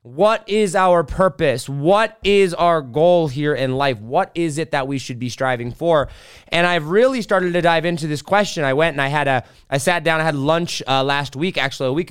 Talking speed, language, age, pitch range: 235 wpm, English, 20-39, 135-180 Hz